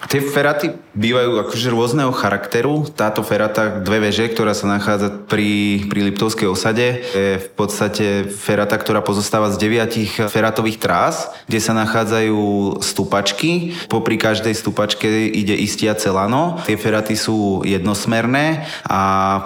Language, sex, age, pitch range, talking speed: Slovak, male, 20-39, 100-115 Hz, 135 wpm